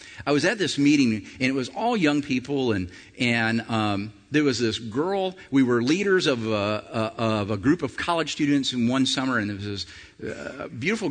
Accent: American